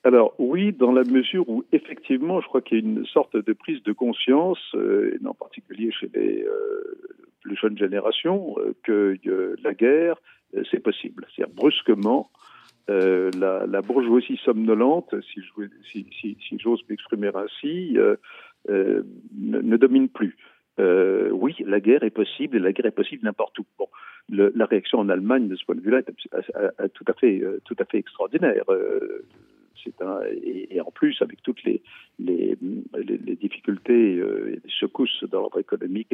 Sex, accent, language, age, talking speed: male, French, French, 50-69, 185 wpm